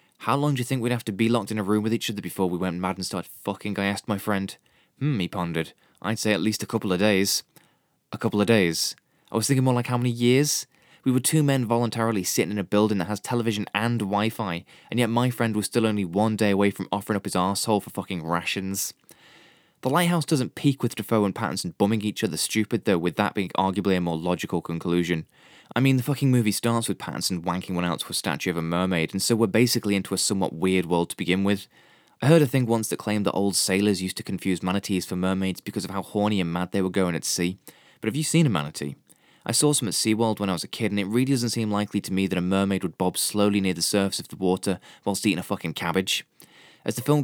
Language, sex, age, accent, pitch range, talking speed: English, male, 20-39, British, 95-115 Hz, 260 wpm